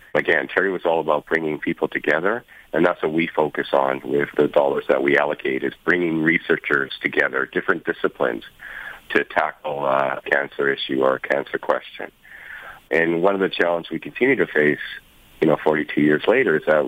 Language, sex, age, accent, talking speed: English, male, 40-59, American, 180 wpm